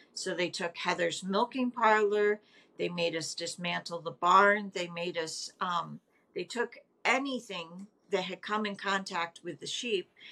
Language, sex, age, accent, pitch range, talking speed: English, female, 50-69, American, 180-220 Hz, 155 wpm